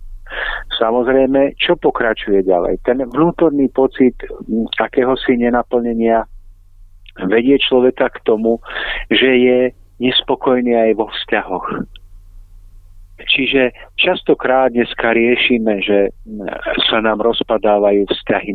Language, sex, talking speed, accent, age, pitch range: Czech, male, 95 wpm, native, 50-69, 95-120 Hz